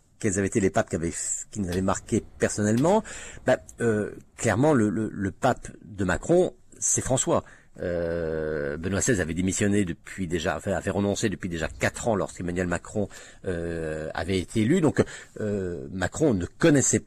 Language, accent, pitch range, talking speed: French, French, 90-120 Hz, 170 wpm